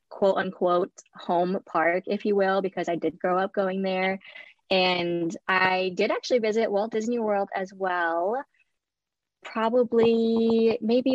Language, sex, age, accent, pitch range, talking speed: English, female, 20-39, American, 175-210 Hz, 140 wpm